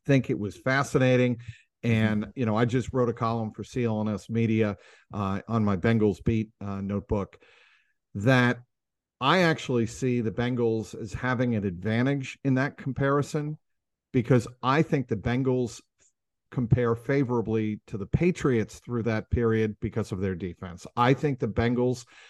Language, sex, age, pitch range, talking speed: English, male, 50-69, 110-135 Hz, 150 wpm